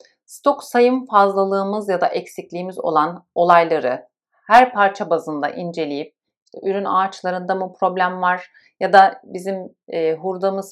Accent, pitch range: native, 175-215 Hz